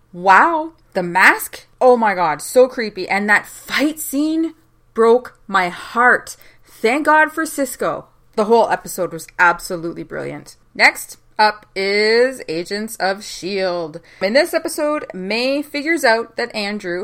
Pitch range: 190-290 Hz